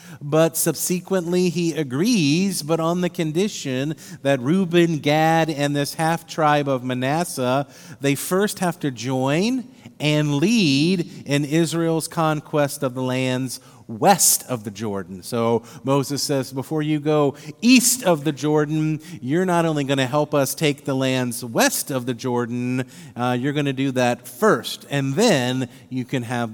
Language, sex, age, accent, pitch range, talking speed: English, male, 40-59, American, 140-175 Hz, 155 wpm